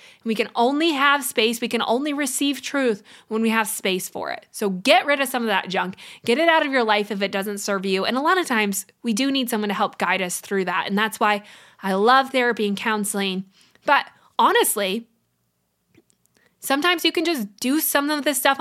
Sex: female